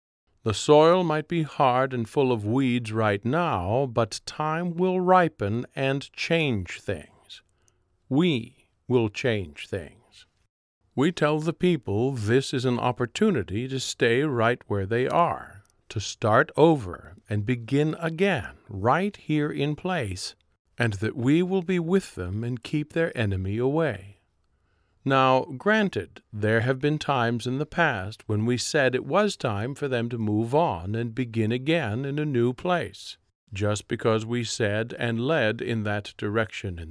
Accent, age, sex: American, 50-69, male